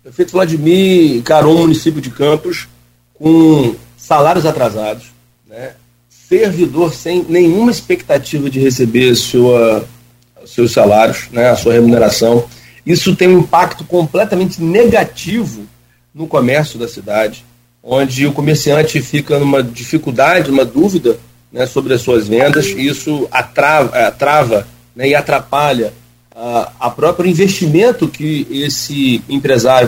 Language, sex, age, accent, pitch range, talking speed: Portuguese, male, 40-59, Brazilian, 120-180 Hz, 125 wpm